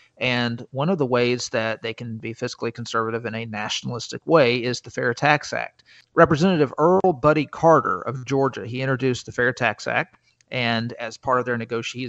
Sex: male